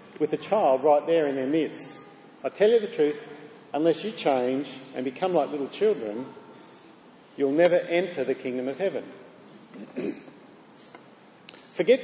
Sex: male